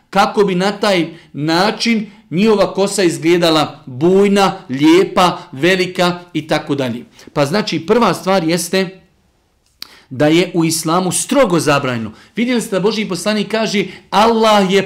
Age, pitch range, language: 50-69, 160-205 Hz, English